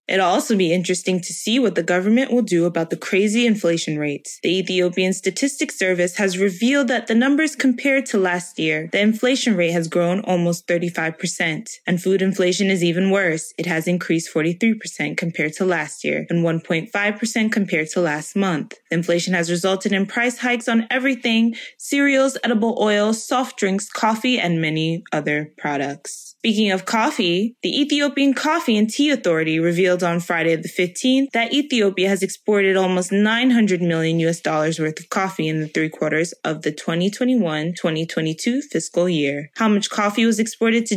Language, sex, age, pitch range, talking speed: English, female, 20-39, 170-230 Hz, 175 wpm